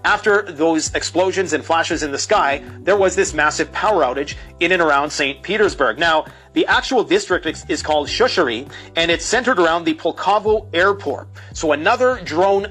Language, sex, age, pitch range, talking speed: English, male, 40-59, 145-185 Hz, 175 wpm